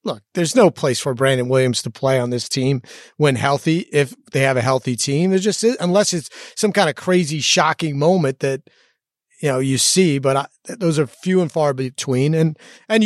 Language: English